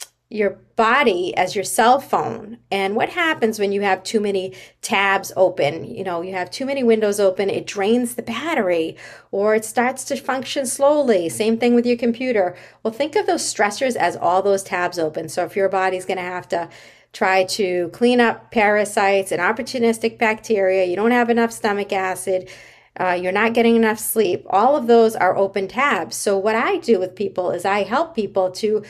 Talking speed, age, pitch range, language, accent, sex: 195 wpm, 40-59, 190-235 Hz, English, American, female